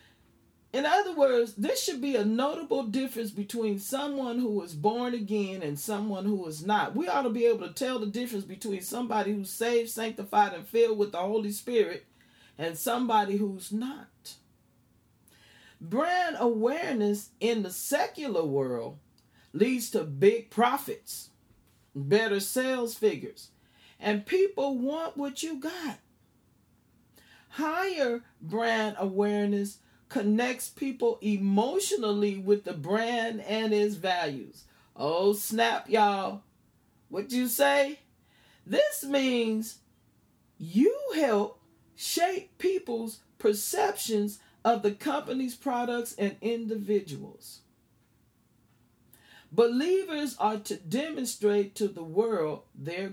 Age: 40-59